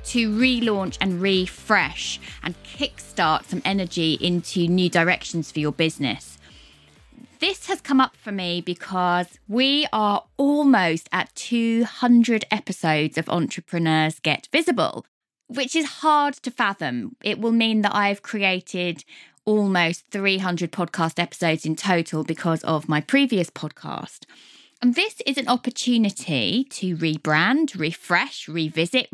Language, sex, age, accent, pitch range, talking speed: English, female, 20-39, British, 175-250 Hz, 130 wpm